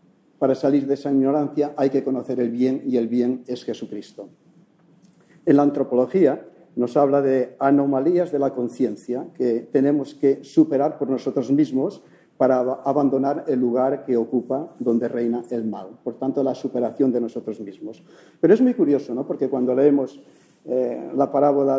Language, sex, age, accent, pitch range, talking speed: English, male, 50-69, Spanish, 125-145 Hz, 165 wpm